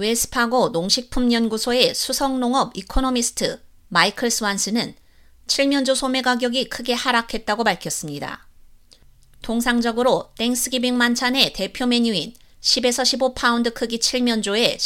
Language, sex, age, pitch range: Korean, female, 30-49, 210-250 Hz